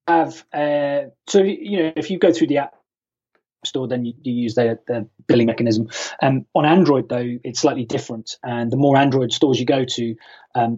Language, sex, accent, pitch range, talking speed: English, male, British, 115-145 Hz, 200 wpm